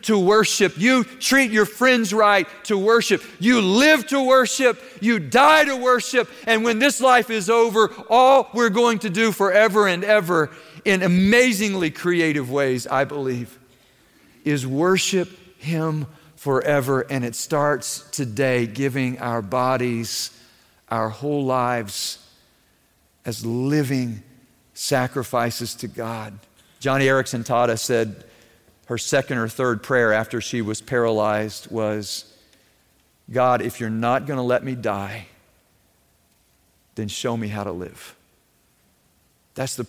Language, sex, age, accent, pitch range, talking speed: English, male, 50-69, American, 115-185 Hz, 130 wpm